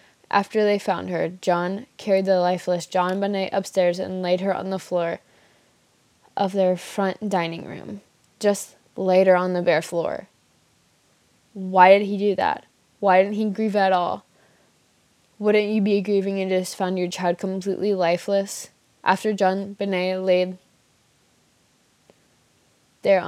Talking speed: 145 wpm